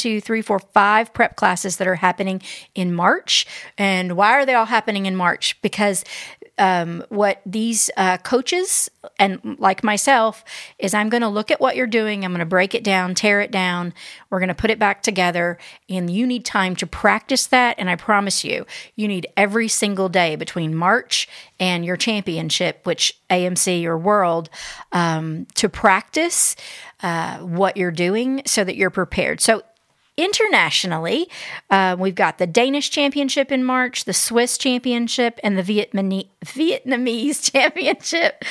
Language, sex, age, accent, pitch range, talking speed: English, female, 40-59, American, 190-245 Hz, 165 wpm